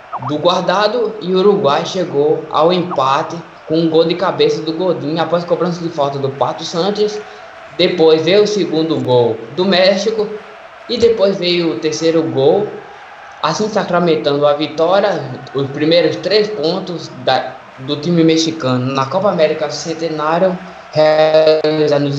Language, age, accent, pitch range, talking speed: Portuguese, 20-39, Brazilian, 145-185 Hz, 140 wpm